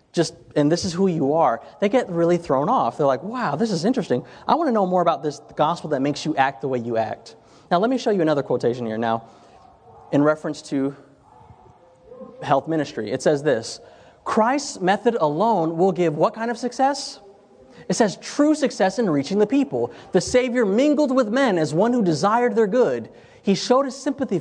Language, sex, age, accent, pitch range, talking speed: English, male, 30-49, American, 150-235 Hz, 205 wpm